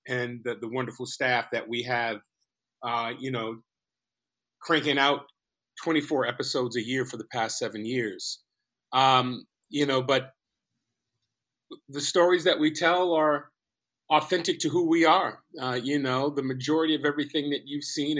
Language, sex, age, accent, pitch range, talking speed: English, male, 40-59, American, 125-150 Hz, 155 wpm